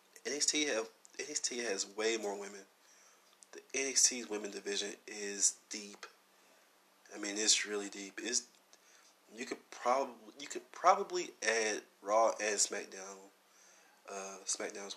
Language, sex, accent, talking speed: English, male, American, 125 wpm